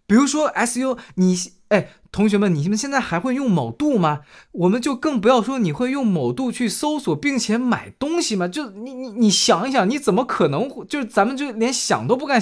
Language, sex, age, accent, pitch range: Chinese, male, 20-39, native, 165-245 Hz